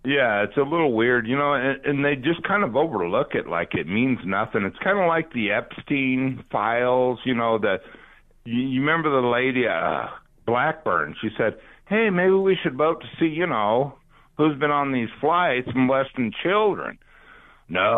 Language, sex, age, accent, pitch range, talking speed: English, male, 60-79, American, 120-165 Hz, 185 wpm